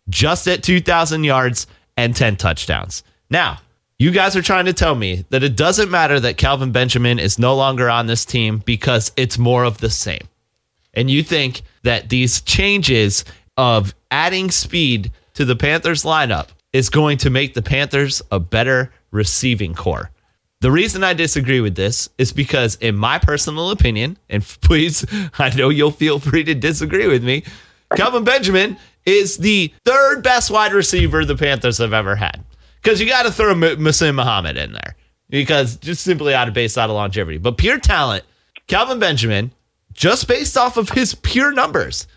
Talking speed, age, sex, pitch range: 175 wpm, 30-49, male, 110-165 Hz